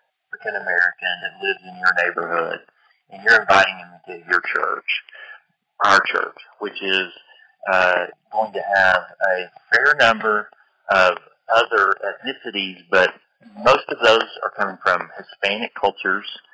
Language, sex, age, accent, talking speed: English, male, 30-49, American, 130 wpm